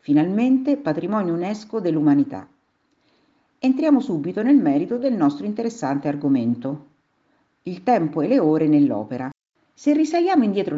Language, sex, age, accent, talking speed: Italian, female, 50-69, native, 115 wpm